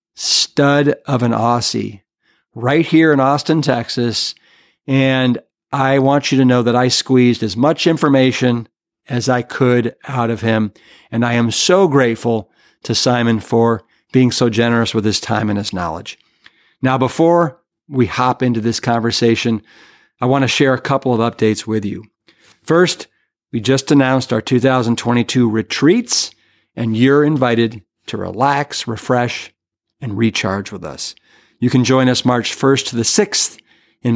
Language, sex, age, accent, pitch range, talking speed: English, male, 50-69, American, 115-135 Hz, 155 wpm